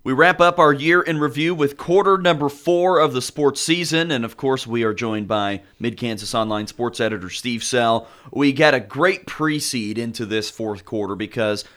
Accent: American